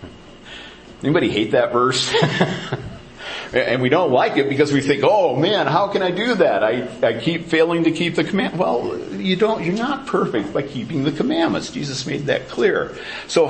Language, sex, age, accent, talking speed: English, male, 50-69, American, 185 wpm